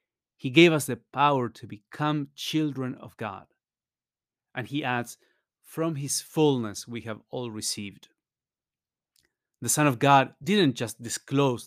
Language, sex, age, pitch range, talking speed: English, male, 30-49, 115-145 Hz, 140 wpm